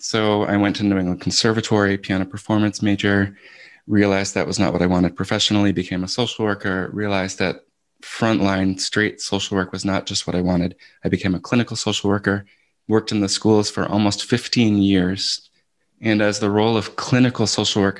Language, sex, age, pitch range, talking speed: English, male, 20-39, 95-110 Hz, 185 wpm